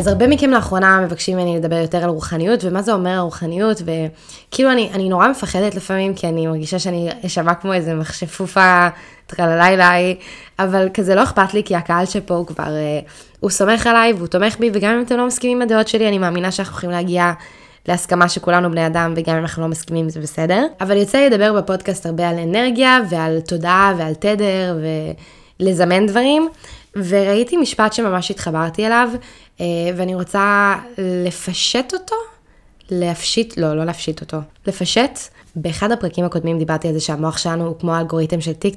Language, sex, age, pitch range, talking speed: Hebrew, female, 10-29, 170-220 Hz, 170 wpm